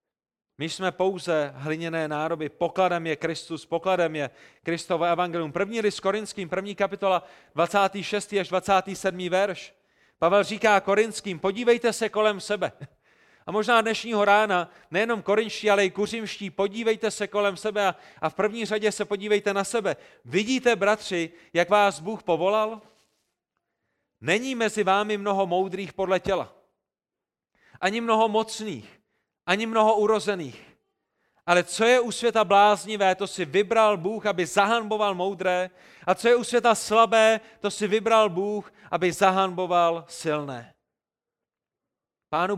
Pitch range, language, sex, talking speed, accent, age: 175-210 Hz, Czech, male, 135 wpm, native, 30-49